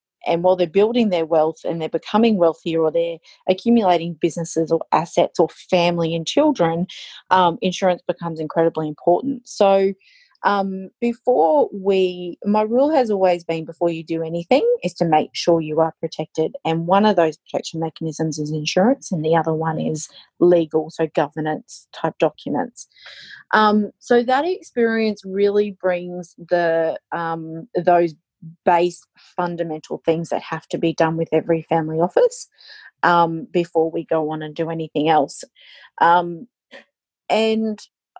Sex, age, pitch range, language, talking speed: female, 30-49, 160-200 Hz, English, 150 wpm